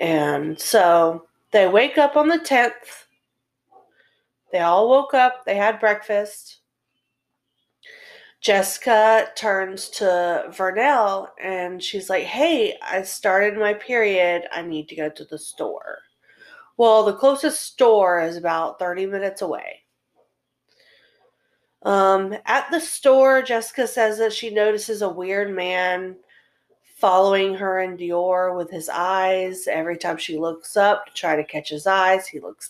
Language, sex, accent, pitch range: English, female, American, 185-235 Hz